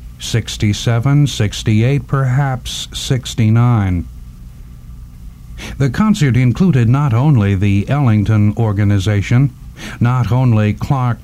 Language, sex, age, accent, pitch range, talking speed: English, male, 60-79, American, 90-135 Hz, 80 wpm